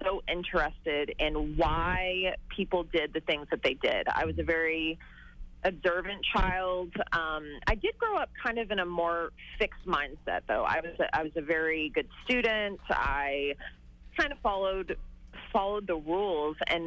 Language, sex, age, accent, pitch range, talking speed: English, female, 30-49, American, 150-185 Hz, 165 wpm